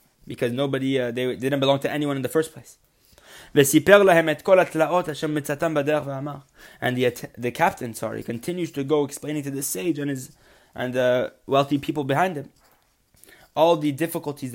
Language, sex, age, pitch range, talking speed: English, male, 20-39, 120-150 Hz, 145 wpm